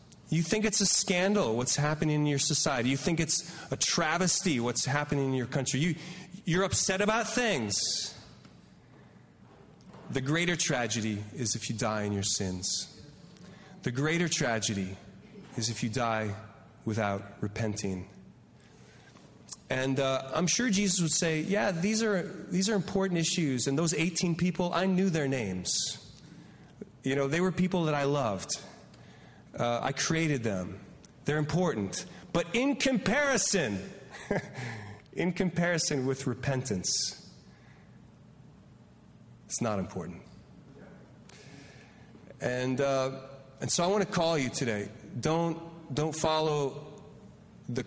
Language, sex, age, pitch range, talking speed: English, male, 30-49, 120-175 Hz, 130 wpm